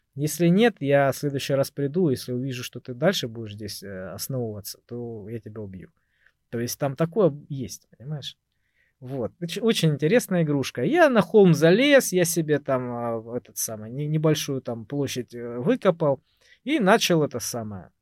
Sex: male